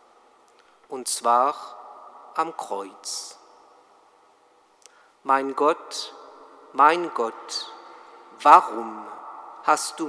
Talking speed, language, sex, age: 65 wpm, German, male, 50-69